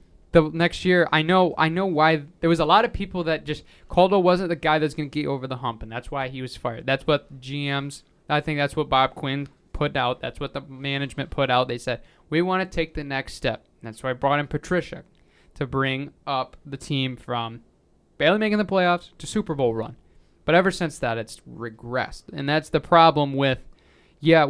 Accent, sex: American, male